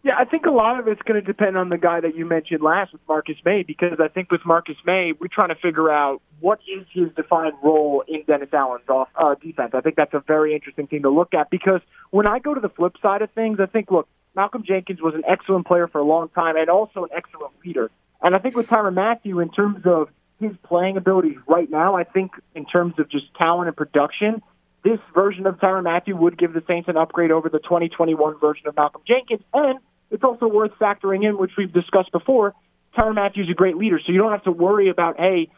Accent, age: American, 20-39